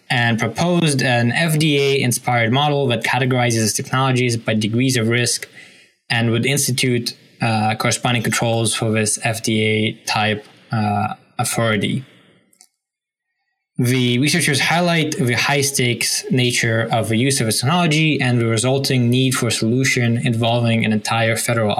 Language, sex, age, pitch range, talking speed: English, male, 10-29, 110-130 Hz, 125 wpm